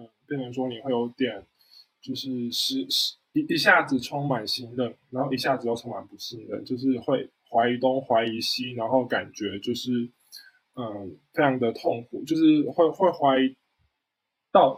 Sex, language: male, Chinese